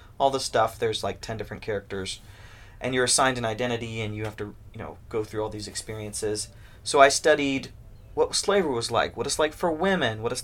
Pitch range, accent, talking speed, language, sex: 105-140 Hz, American, 220 wpm, English, male